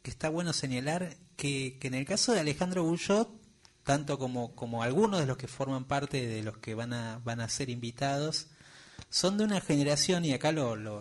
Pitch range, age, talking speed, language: 120-155 Hz, 30-49, 200 wpm, Spanish